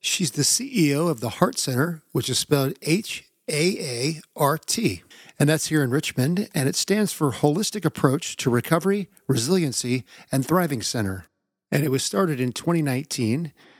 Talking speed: 165 wpm